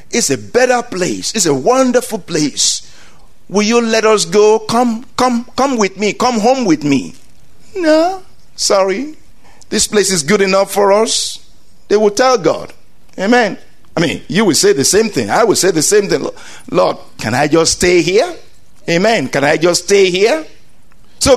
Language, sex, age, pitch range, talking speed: English, male, 50-69, 125-205 Hz, 175 wpm